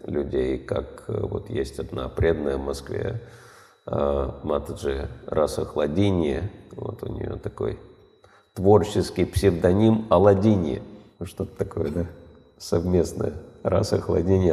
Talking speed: 90 wpm